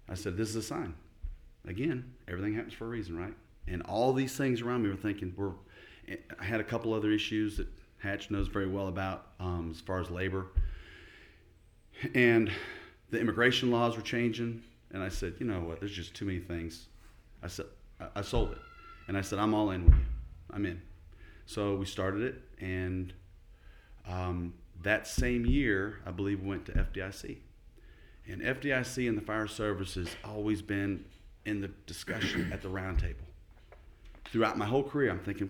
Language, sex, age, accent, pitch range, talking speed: English, male, 40-59, American, 90-115 Hz, 185 wpm